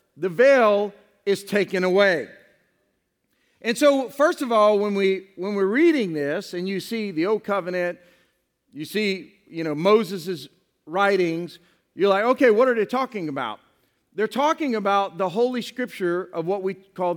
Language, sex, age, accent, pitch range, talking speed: English, male, 40-59, American, 190-240 Hz, 160 wpm